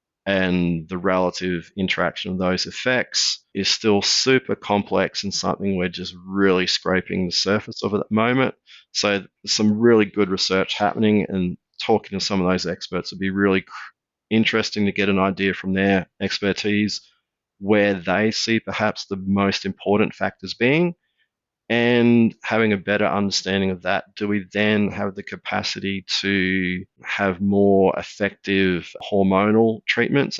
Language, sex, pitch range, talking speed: English, male, 95-105 Hz, 150 wpm